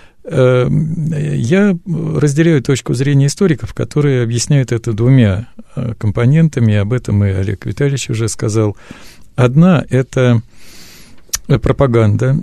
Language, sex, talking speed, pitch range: Russian, male, 95 wpm, 110-140 Hz